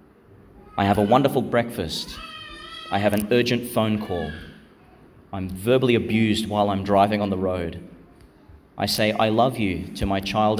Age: 30-49